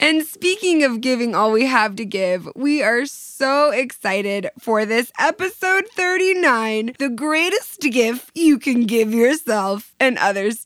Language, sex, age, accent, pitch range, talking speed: English, female, 20-39, American, 210-290 Hz, 145 wpm